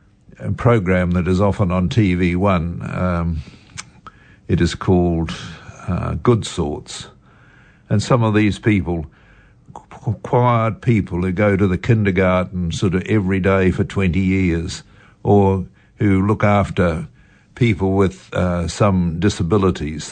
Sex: male